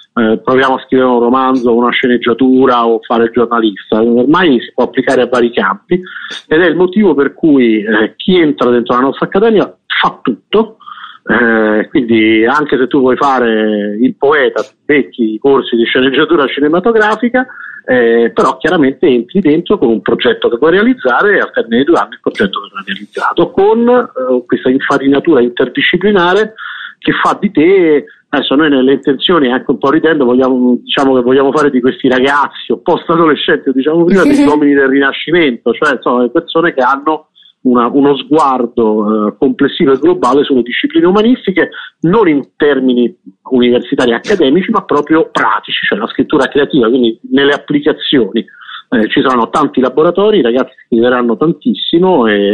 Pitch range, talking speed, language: 120-170 Hz, 165 wpm, English